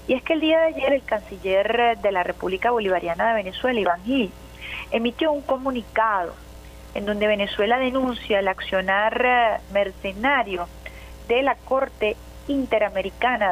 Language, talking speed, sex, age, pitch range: Spanish, 140 wpm, female, 40-59, 185-240 Hz